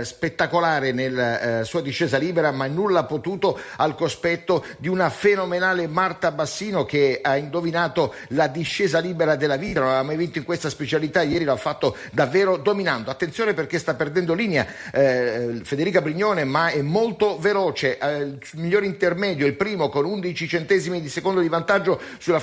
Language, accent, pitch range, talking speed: Italian, native, 165-210 Hz, 170 wpm